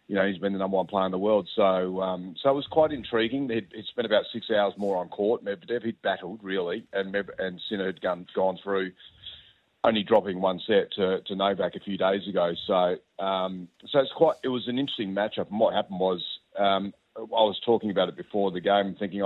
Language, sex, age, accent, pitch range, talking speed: English, male, 40-59, Australian, 95-105 Hz, 230 wpm